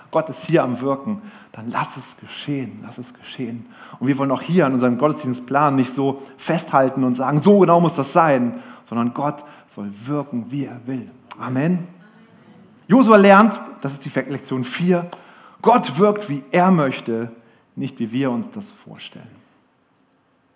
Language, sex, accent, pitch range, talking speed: German, male, German, 130-180 Hz, 165 wpm